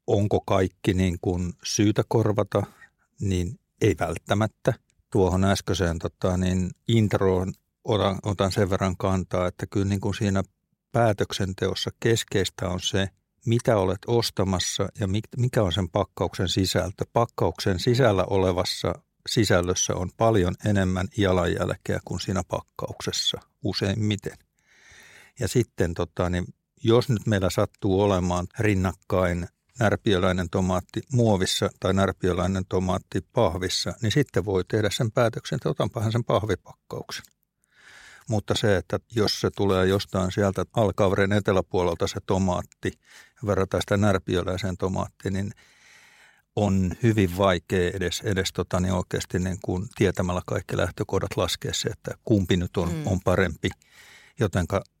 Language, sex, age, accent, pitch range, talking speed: Finnish, male, 60-79, native, 90-105 Hz, 115 wpm